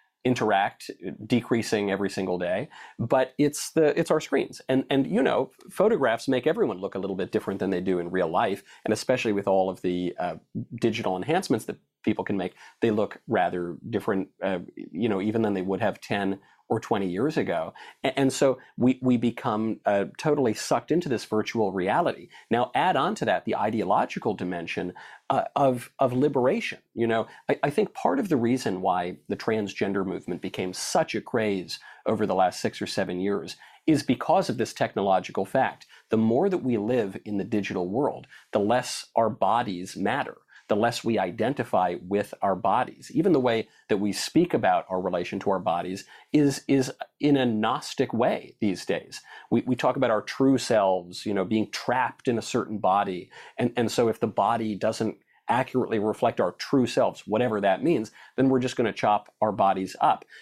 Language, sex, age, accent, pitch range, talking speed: English, male, 40-59, American, 95-125 Hz, 190 wpm